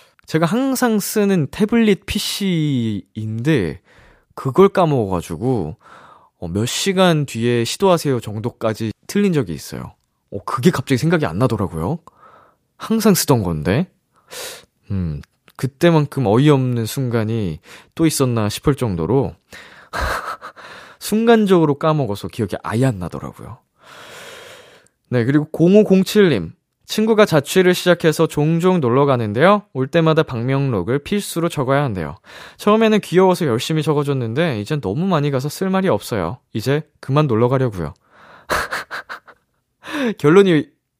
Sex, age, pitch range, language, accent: male, 20-39, 120-185 Hz, Korean, native